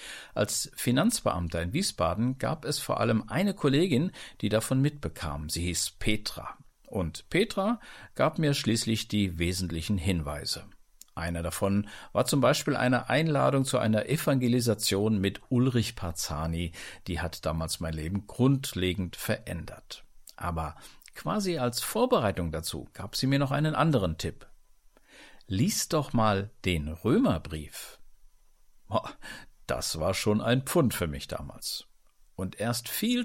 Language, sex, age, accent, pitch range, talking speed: German, male, 50-69, German, 90-125 Hz, 130 wpm